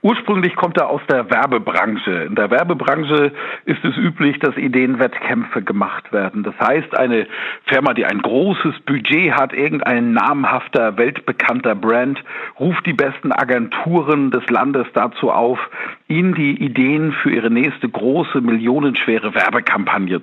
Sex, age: male, 50-69